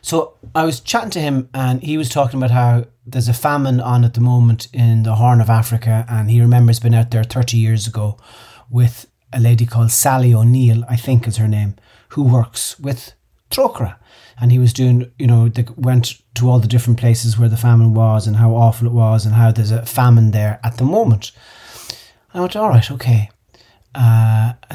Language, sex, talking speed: English, male, 210 wpm